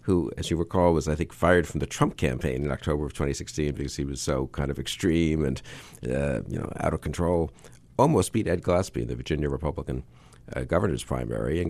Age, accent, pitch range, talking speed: 50-69, American, 70-85 Hz, 215 wpm